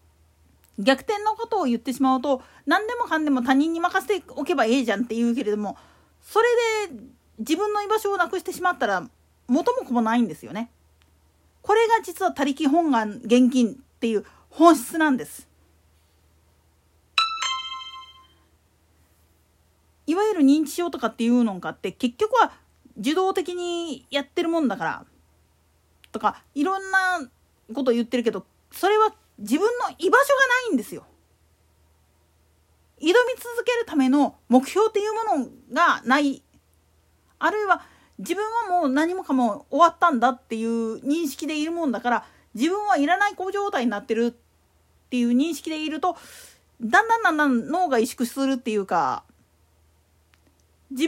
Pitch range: 225-350 Hz